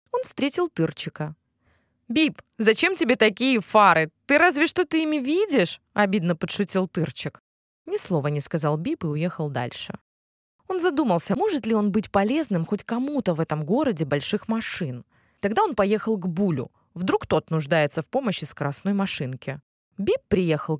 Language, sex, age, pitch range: Russian, female, 20-39, 160-240 Hz